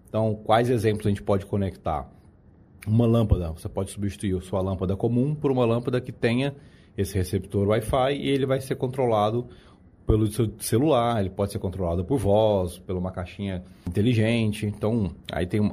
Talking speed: 170 wpm